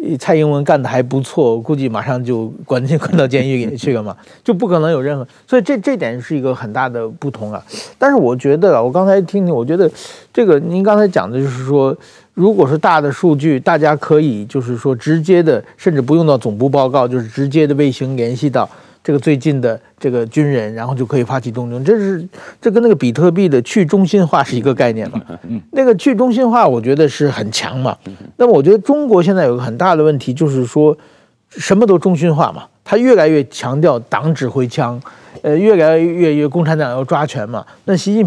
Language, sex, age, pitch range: Chinese, male, 50-69, 130-180 Hz